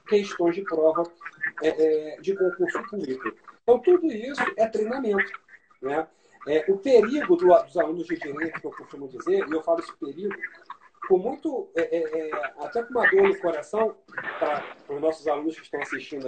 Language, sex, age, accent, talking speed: Portuguese, male, 40-59, Brazilian, 180 wpm